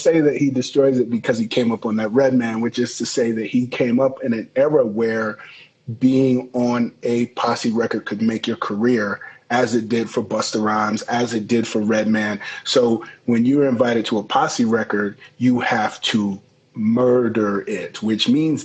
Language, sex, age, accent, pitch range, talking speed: English, male, 30-49, American, 110-130 Hz, 195 wpm